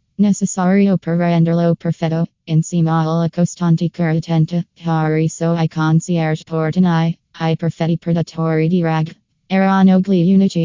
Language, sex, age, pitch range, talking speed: Italian, female, 20-39, 165-180 Hz, 120 wpm